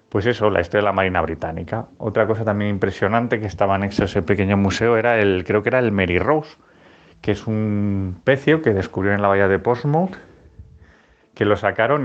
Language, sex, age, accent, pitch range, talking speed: Spanish, male, 30-49, Spanish, 95-115 Hz, 200 wpm